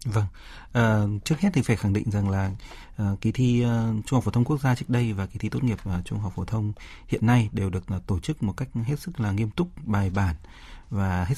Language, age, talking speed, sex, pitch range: Vietnamese, 30-49, 265 wpm, male, 100-130 Hz